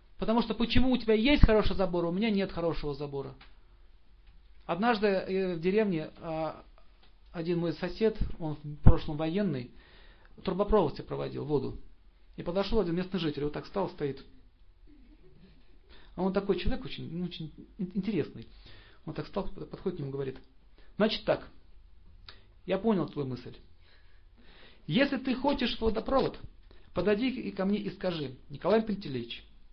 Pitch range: 145-210 Hz